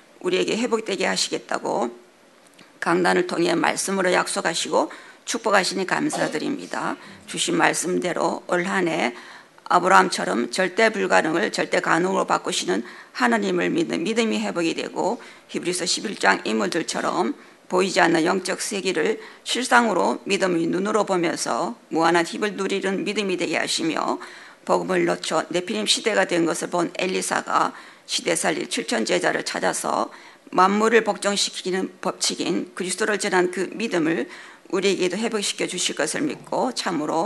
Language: Korean